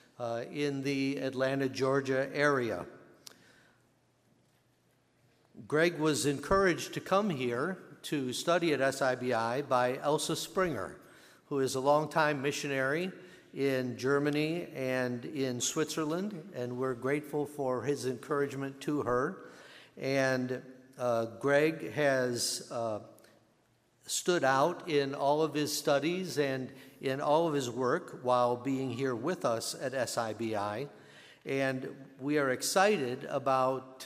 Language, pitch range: English, 130-150 Hz